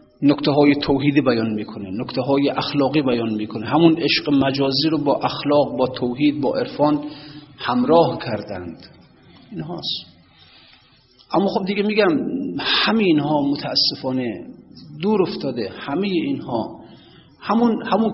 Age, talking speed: 40-59, 115 wpm